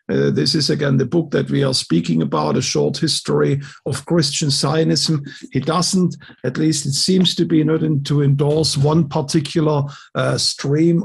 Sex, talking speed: male, 175 wpm